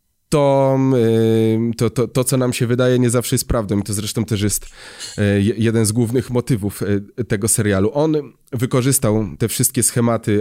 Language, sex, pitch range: Polish, male, 110-135 Hz